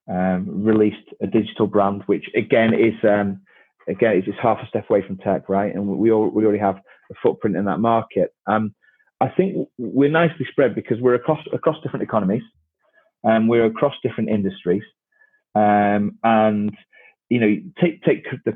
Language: English